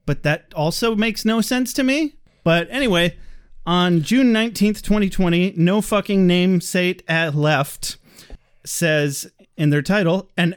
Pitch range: 155-220 Hz